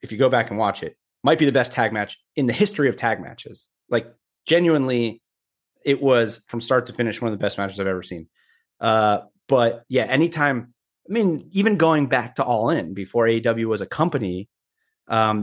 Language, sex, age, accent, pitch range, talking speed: English, male, 30-49, American, 110-135 Hz, 205 wpm